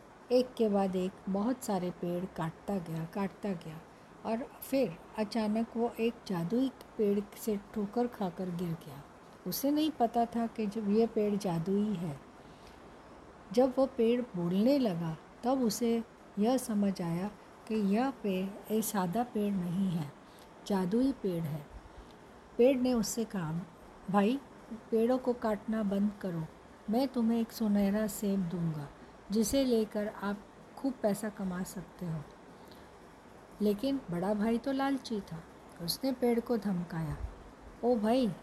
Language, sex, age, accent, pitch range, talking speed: Hindi, female, 60-79, native, 185-235 Hz, 140 wpm